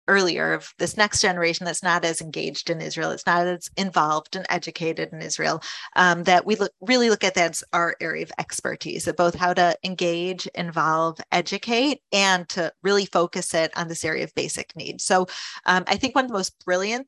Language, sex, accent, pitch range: English, female, American, 170-205 Hz